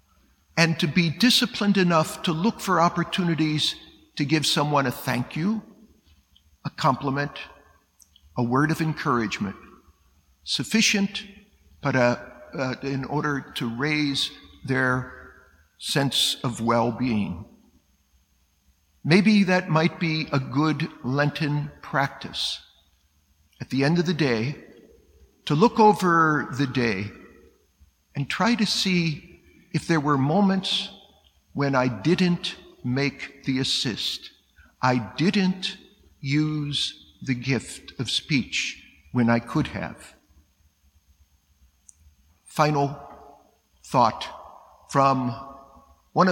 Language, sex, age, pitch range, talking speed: English, male, 50-69, 115-160 Hz, 105 wpm